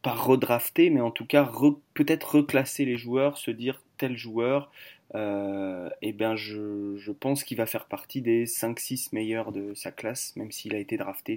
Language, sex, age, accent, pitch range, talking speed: French, male, 20-39, French, 110-130 Hz, 190 wpm